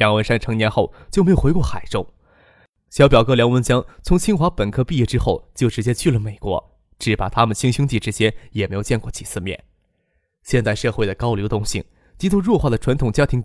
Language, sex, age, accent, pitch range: Chinese, male, 20-39, native, 110-145 Hz